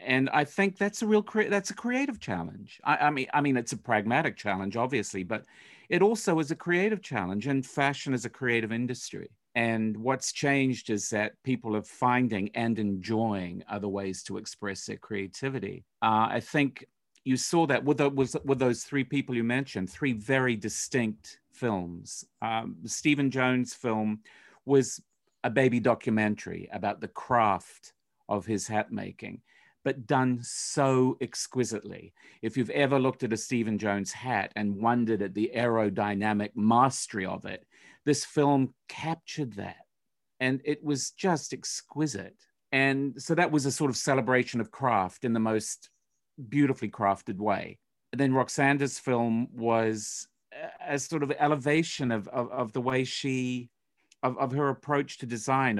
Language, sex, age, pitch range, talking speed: English, male, 50-69, 110-140 Hz, 165 wpm